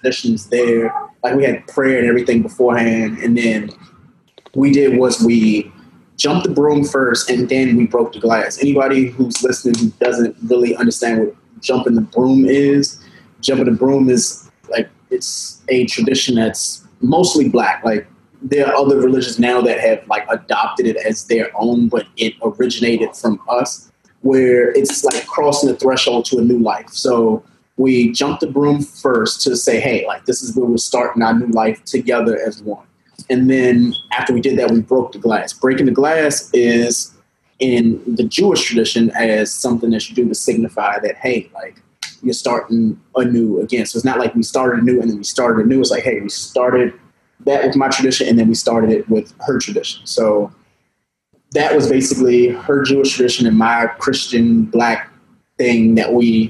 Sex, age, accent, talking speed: male, 20-39, American, 185 wpm